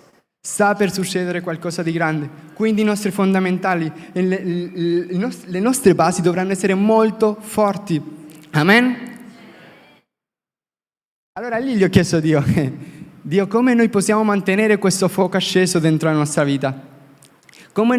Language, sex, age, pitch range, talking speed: Italian, male, 20-39, 140-190 Hz, 135 wpm